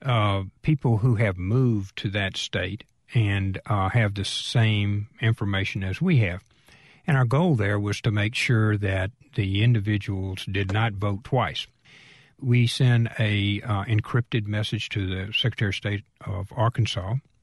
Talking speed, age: 155 wpm, 50-69